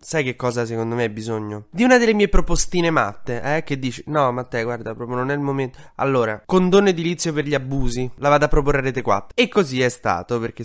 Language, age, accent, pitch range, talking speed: Italian, 20-39, native, 120-150 Hz, 230 wpm